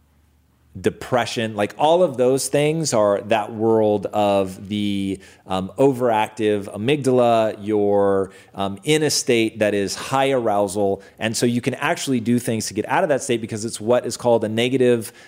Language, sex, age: English, male, 30-49